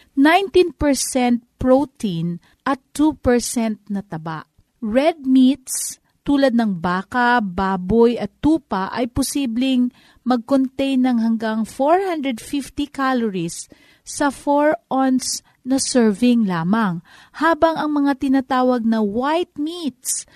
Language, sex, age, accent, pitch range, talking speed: Filipino, female, 40-59, native, 215-275 Hz, 100 wpm